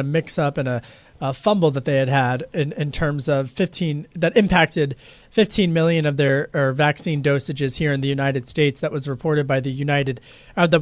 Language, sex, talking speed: English, male, 205 wpm